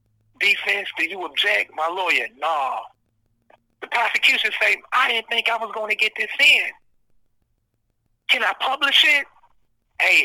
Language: English